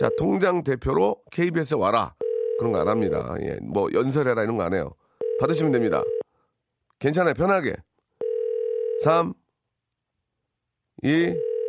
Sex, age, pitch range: male, 40-59, 110-150 Hz